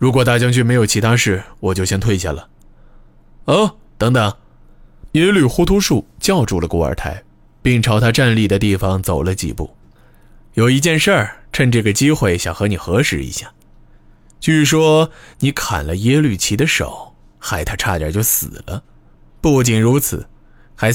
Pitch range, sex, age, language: 80-130 Hz, male, 20-39, Chinese